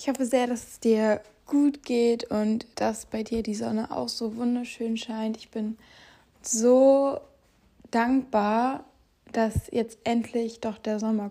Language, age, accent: German, 20-39, German